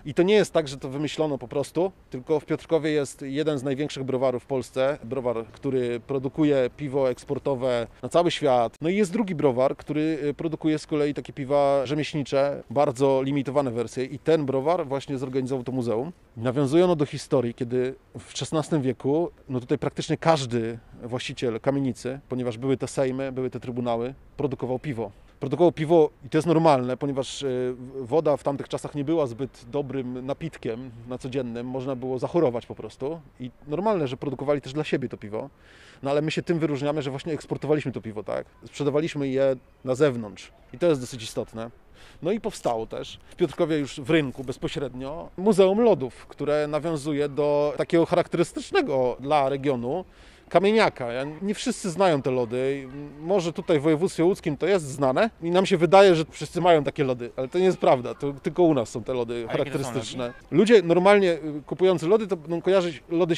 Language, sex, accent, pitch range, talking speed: Polish, male, native, 130-165 Hz, 180 wpm